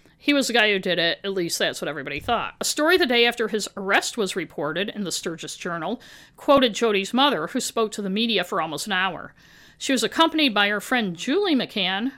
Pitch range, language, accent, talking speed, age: 200-280 Hz, English, American, 225 wpm, 50-69